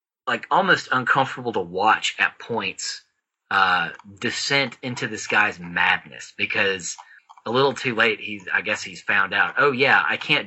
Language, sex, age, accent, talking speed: English, male, 30-49, American, 160 wpm